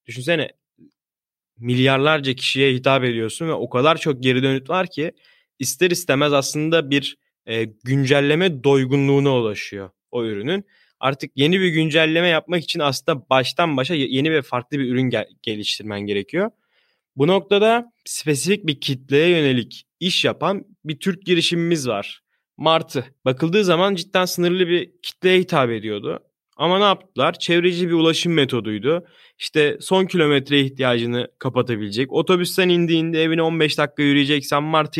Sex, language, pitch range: male, Turkish, 135-185 Hz